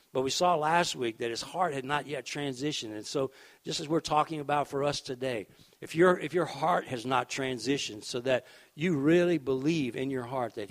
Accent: American